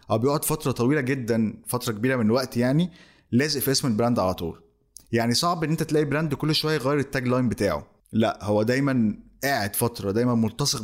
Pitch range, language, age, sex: 110-140 Hz, Arabic, 20-39, male